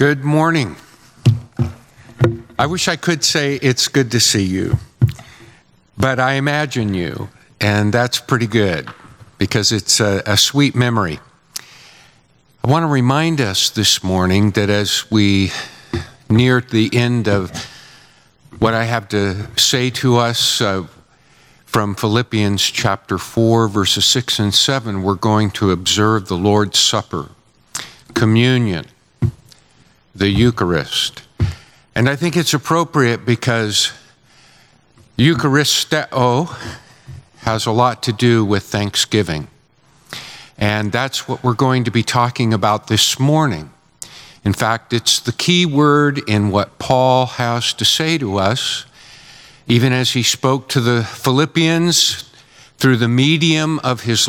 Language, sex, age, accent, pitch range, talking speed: English, male, 50-69, American, 105-135 Hz, 130 wpm